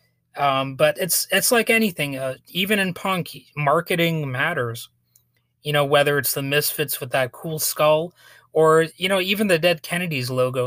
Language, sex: English, male